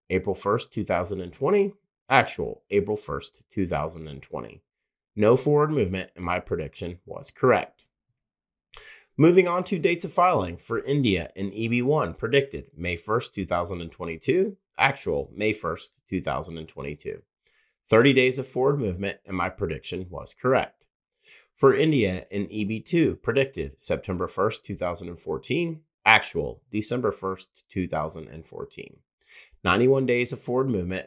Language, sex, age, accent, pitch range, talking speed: English, male, 30-49, American, 85-130 Hz, 115 wpm